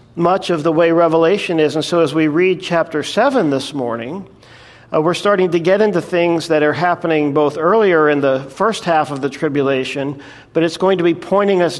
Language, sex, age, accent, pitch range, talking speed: English, male, 50-69, American, 140-165 Hz, 210 wpm